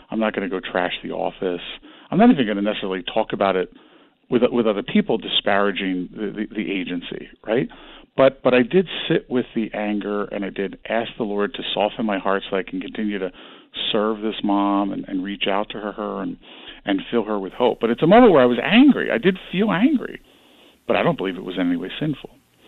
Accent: American